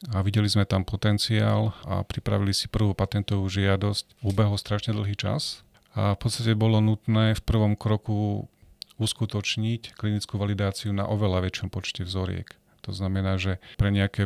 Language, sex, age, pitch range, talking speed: Slovak, male, 40-59, 95-110 Hz, 150 wpm